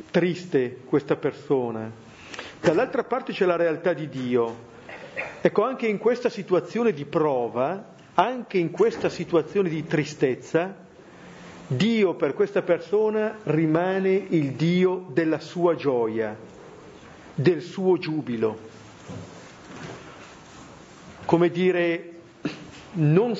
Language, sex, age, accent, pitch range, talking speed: Italian, male, 50-69, native, 145-195 Hz, 100 wpm